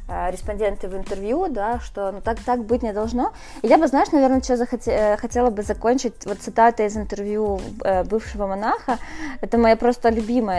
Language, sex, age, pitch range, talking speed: Ukrainian, female, 20-39, 200-255 Hz, 170 wpm